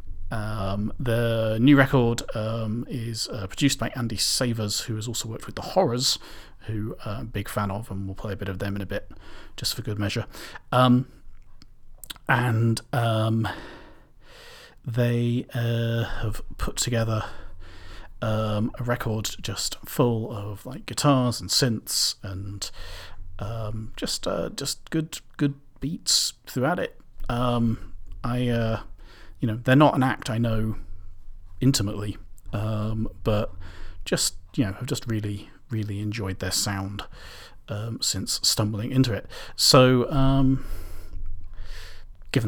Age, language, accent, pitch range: 40-59, English, British, 100-125 Hz